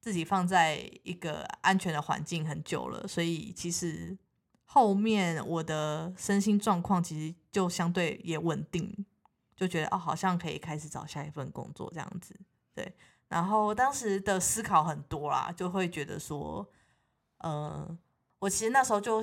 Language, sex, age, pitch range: Chinese, female, 20-39, 160-195 Hz